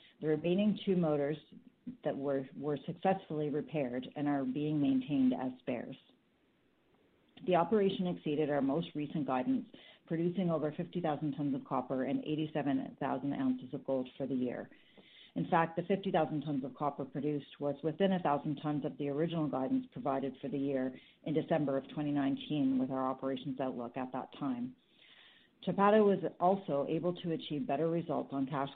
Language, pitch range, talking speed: English, 135-170 Hz, 165 wpm